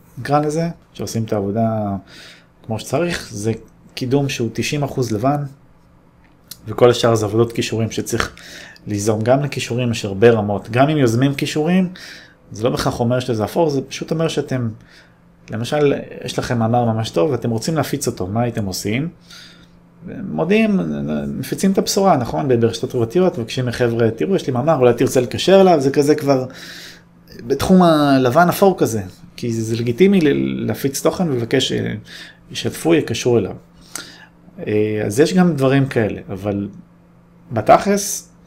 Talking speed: 140 wpm